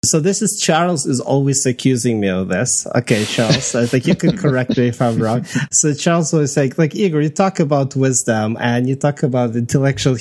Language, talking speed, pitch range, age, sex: English, 210 wpm, 125-160 Hz, 30-49, male